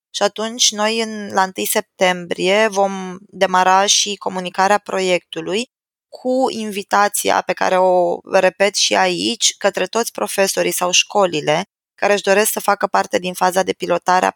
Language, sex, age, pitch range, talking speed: Romanian, female, 20-39, 175-210 Hz, 145 wpm